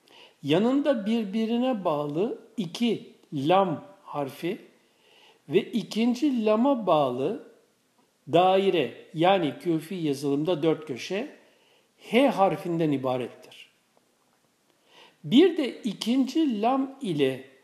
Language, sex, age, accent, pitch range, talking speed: Turkish, male, 60-79, native, 170-265 Hz, 80 wpm